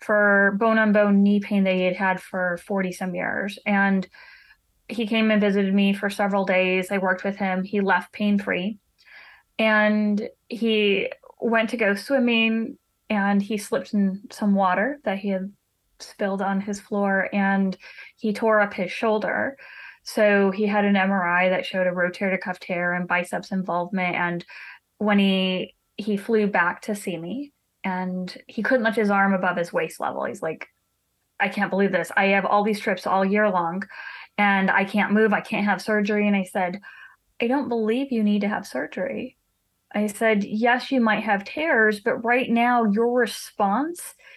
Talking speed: 175 wpm